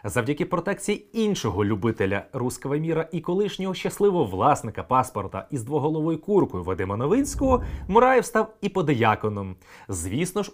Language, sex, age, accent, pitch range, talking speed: Ukrainian, male, 30-49, native, 120-195 Hz, 125 wpm